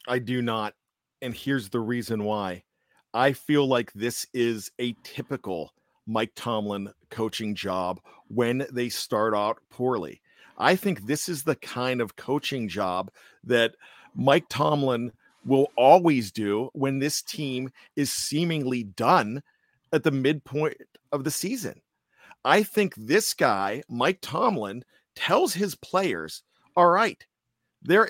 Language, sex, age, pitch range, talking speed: English, male, 40-59, 125-195 Hz, 135 wpm